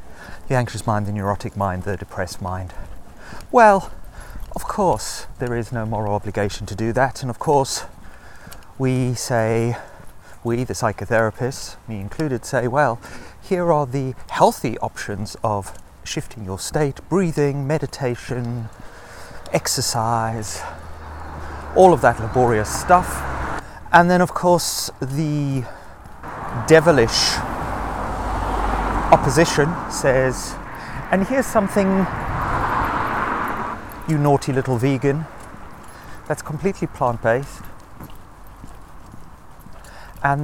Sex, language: male, English